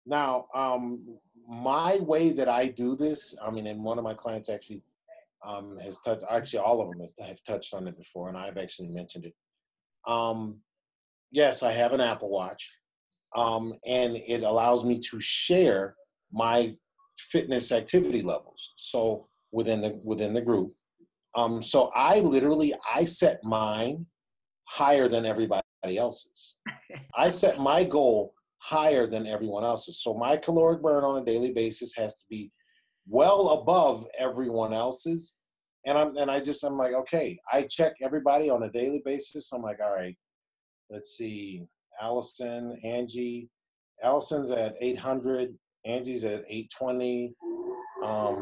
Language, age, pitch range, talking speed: English, 40-59, 110-145 Hz, 150 wpm